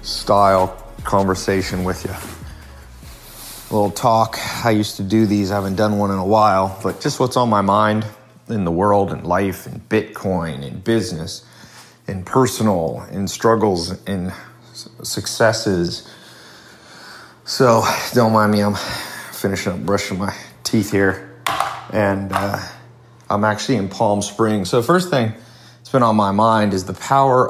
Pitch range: 95-120 Hz